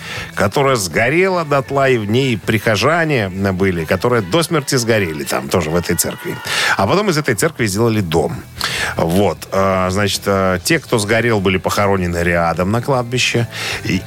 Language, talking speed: Russian, 155 wpm